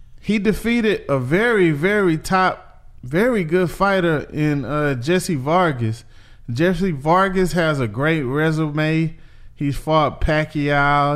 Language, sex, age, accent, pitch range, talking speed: English, male, 20-39, American, 135-185 Hz, 120 wpm